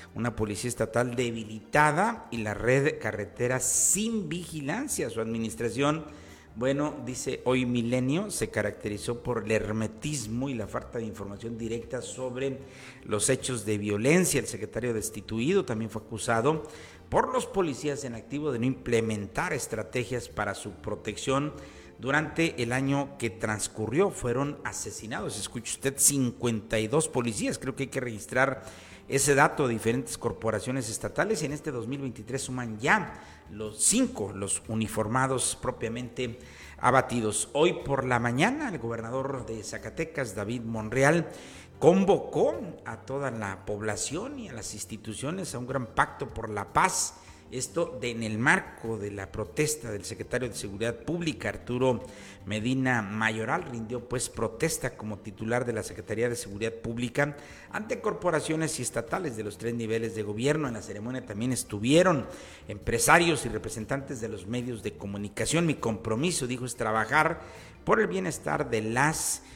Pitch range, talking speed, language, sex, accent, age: 110-135 Hz, 145 wpm, Spanish, male, Mexican, 50-69